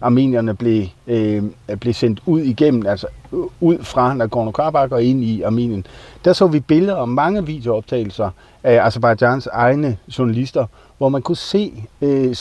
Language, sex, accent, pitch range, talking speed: Danish, male, native, 115-145 Hz, 150 wpm